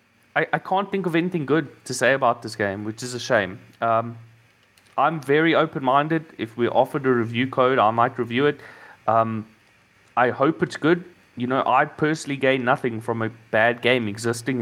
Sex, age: male, 30-49